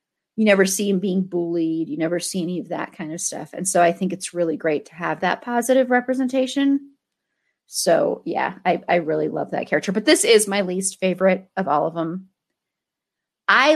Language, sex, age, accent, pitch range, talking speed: English, female, 30-49, American, 190-255 Hz, 200 wpm